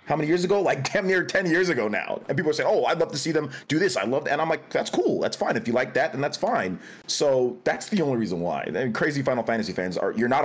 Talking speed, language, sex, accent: 315 wpm, English, male, American